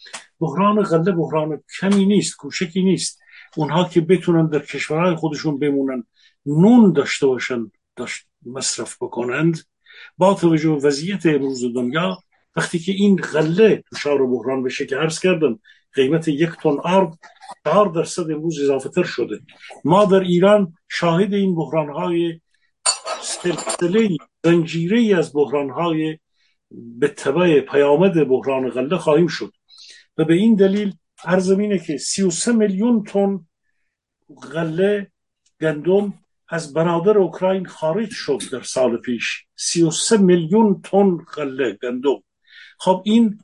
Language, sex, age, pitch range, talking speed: Persian, male, 50-69, 150-190 Hz, 125 wpm